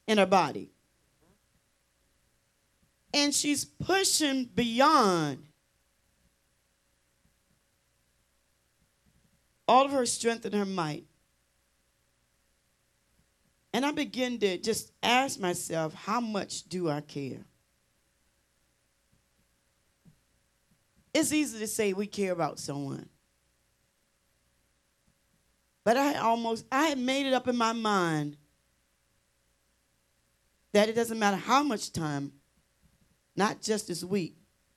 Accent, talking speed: American, 95 wpm